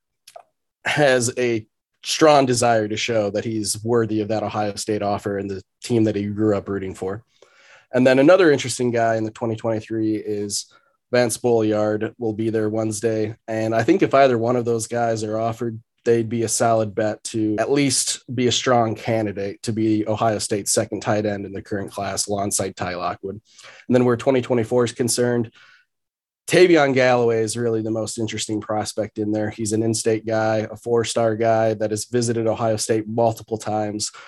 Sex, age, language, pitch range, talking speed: male, 30-49, English, 105-120 Hz, 185 wpm